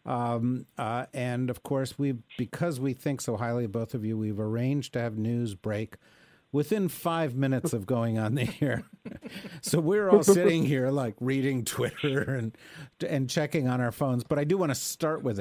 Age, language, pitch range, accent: 50-69, English, 115-140 Hz, American